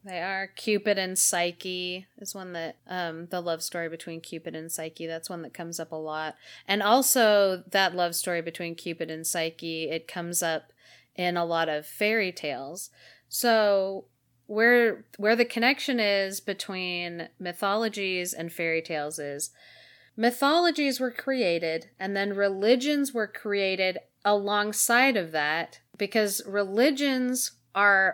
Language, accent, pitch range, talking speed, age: English, American, 170-210 Hz, 145 wpm, 30-49